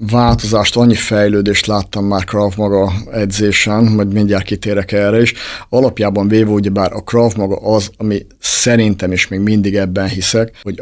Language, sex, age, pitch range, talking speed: Hungarian, male, 50-69, 100-110 Hz, 150 wpm